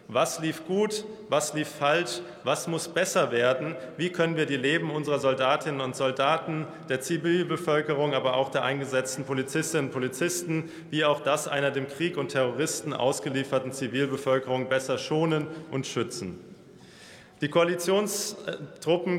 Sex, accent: male, German